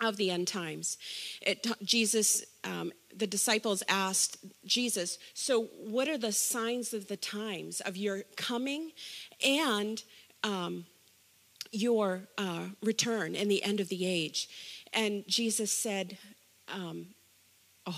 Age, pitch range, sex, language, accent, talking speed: 40-59, 185-235 Hz, female, English, American, 125 wpm